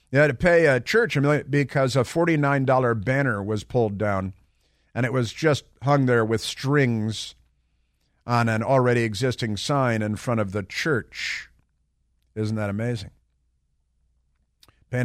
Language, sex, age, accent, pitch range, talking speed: English, male, 50-69, American, 85-130 Hz, 150 wpm